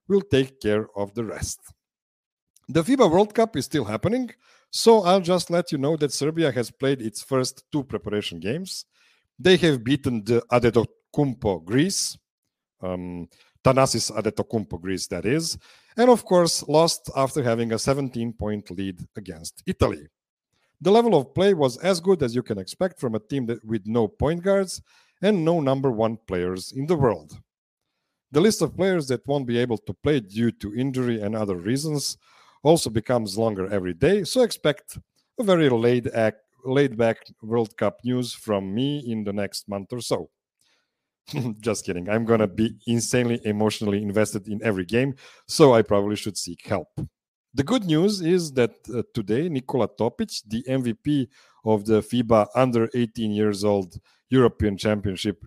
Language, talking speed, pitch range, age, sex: English, 170 wpm, 110-150 Hz, 50-69, male